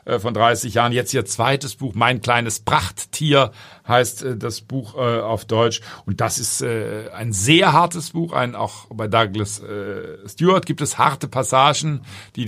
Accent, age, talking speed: German, 50-69, 150 wpm